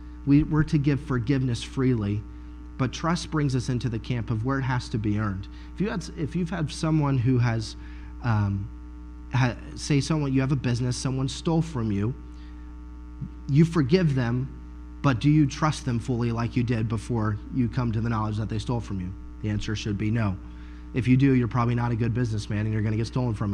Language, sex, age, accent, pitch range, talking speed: English, male, 30-49, American, 105-135 Hz, 210 wpm